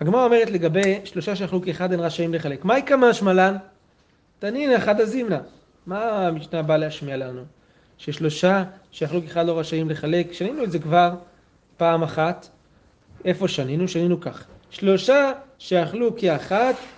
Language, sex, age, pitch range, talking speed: Hebrew, male, 30-49, 160-205 Hz, 135 wpm